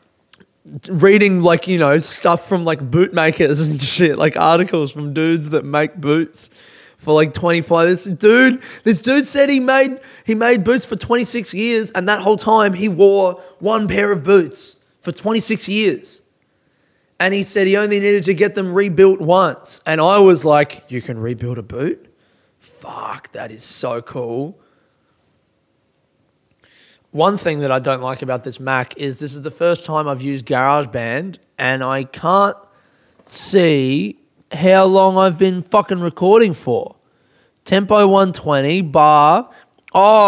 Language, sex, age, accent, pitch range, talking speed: English, male, 20-39, Australian, 155-220 Hz, 155 wpm